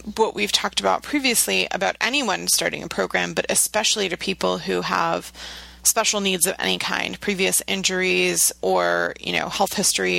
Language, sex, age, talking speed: English, female, 30-49, 165 wpm